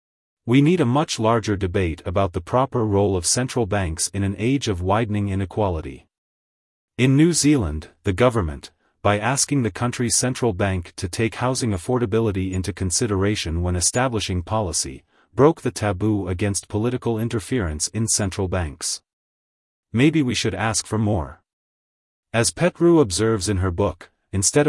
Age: 30-49